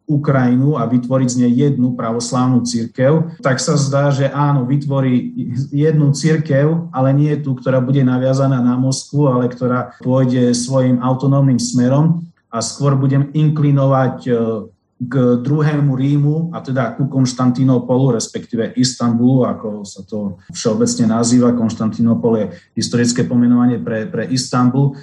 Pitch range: 125-145 Hz